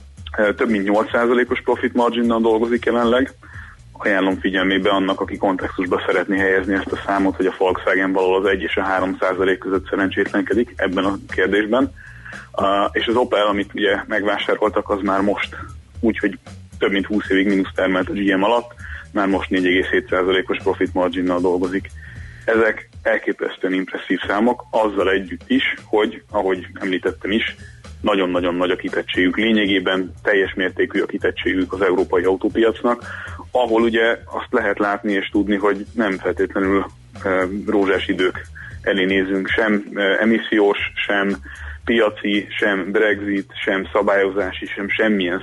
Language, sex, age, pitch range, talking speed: Hungarian, male, 30-49, 95-105 Hz, 135 wpm